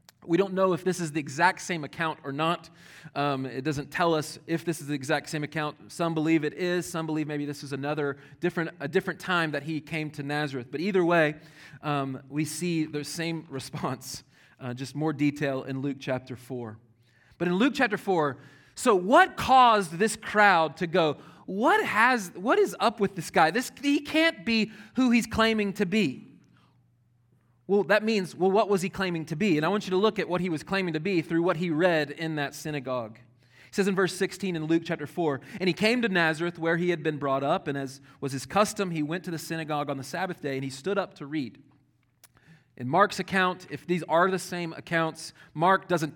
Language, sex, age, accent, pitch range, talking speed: English, male, 30-49, American, 140-185 Hz, 220 wpm